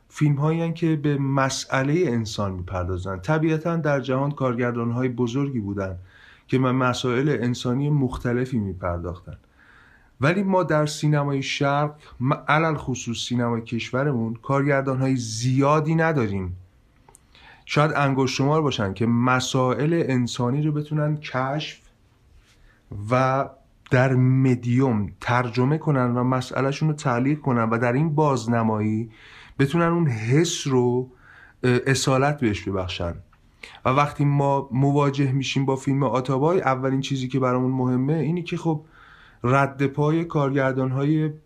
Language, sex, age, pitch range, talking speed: Persian, male, 30-49, 115-145 Hz, 120 wpm